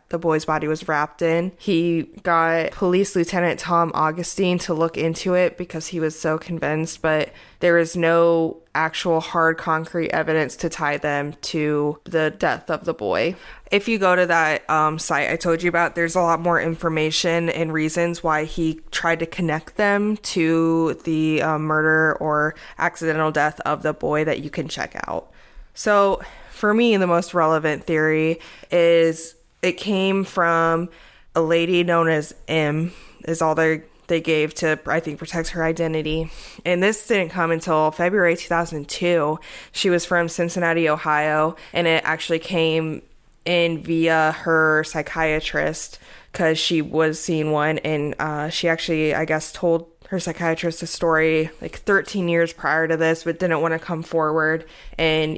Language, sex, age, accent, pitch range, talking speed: English, female, 20-39, American, 155-170 Hz, 165 wpm